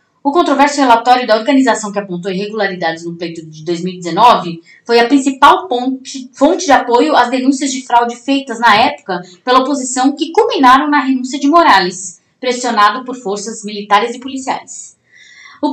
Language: Portuguese